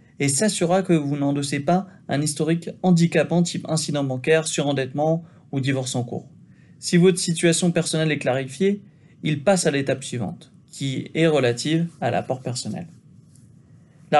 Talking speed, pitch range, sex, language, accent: 150 wpm, 140-175 Hz, male, French, French